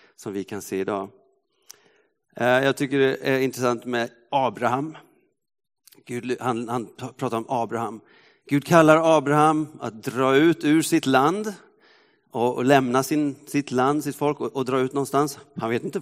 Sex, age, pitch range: male, 40-59, 125-165 Hz